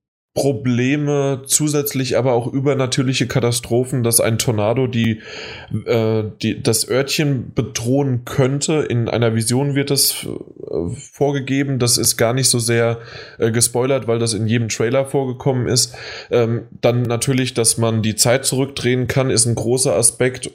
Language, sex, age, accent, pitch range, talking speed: German, male, 20-39, German, 110-130 Hz, 140 wpm